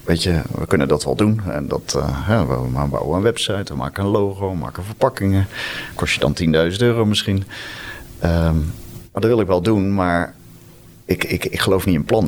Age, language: 40-59, Dutch